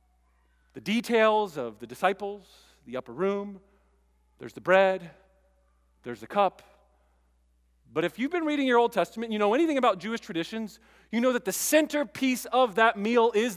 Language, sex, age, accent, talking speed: English, male, 40-59, American, 165 wpm